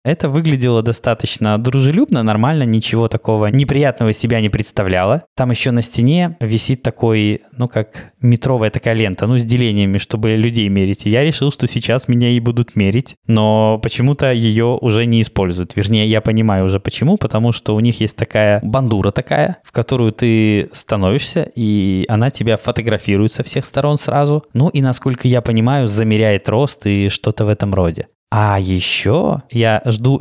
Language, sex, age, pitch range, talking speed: Russian, male, 20-39, 105-125 Hz, 165 wpm